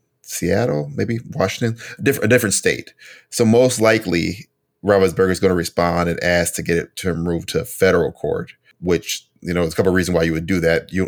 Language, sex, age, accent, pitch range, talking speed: English, male, 30-49, American, 85-95 Hz, 210 wpm